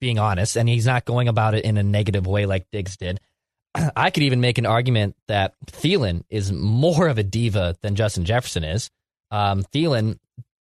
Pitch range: 105-135 Hz